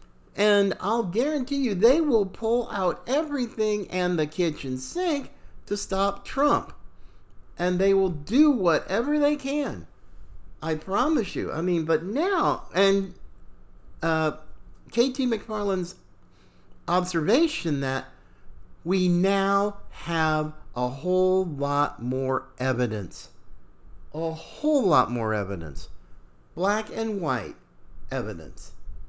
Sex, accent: male, American